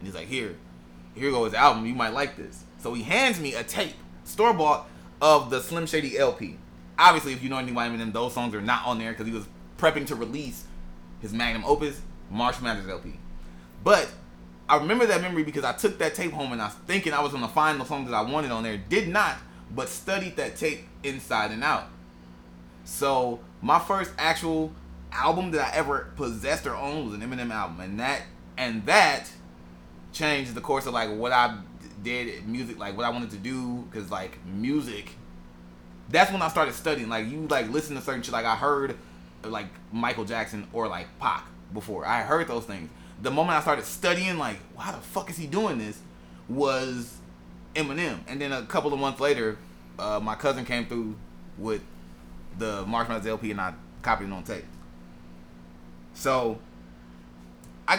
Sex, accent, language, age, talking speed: male, American, English, 20-39, 195 wpm